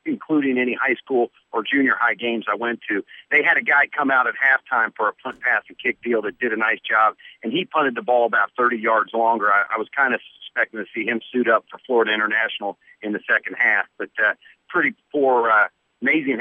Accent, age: American, 50-69